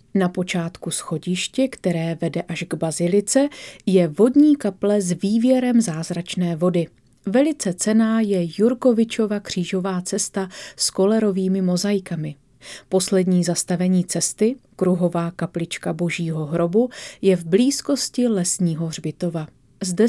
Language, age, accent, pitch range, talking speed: Czech, 30-49, native, 170-220 Hz, 110 wpm